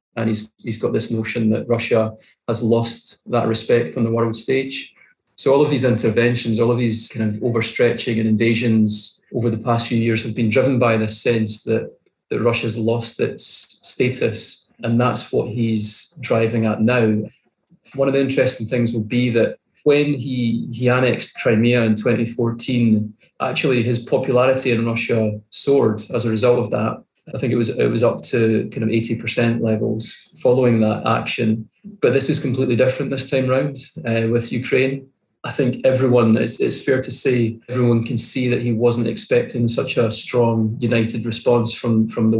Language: English